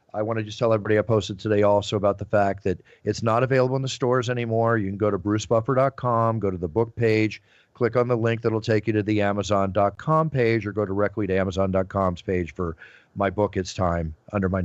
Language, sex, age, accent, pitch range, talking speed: English, male, 40-59, American, 100-120 Hz, 230 wpm